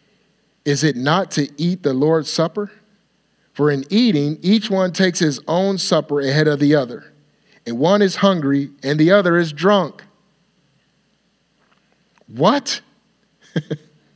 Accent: American